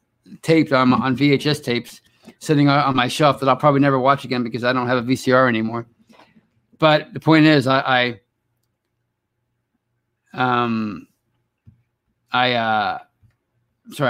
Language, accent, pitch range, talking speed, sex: English, American, 120-150 Hz, 135 wpm, male